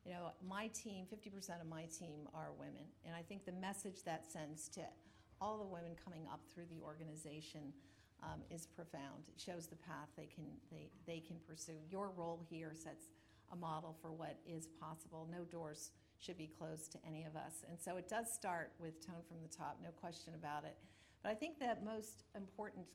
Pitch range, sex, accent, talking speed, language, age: 160-185 Hz, female, American, 200 wpm, English, 50-69